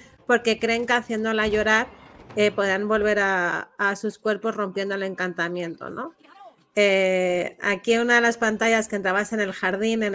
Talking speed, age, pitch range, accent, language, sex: 165 wpm, 30-49, 195-225 Hz, Spanish, Spanish, female